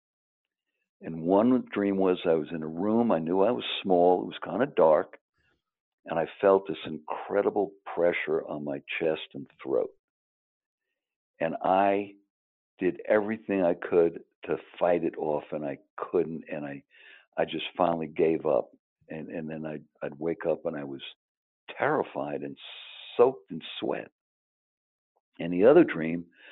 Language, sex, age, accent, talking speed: English, male, 60-79, American, 155 wpm